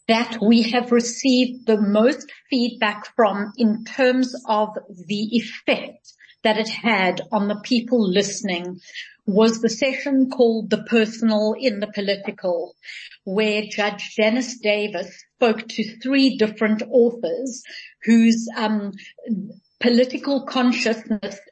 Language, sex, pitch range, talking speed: English, female, 210-245 Hz, 115 wpm